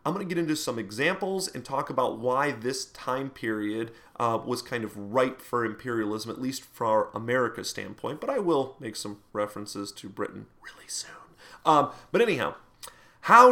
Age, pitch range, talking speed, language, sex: 30-49, 130-190 Hz, 180 wpm, English, male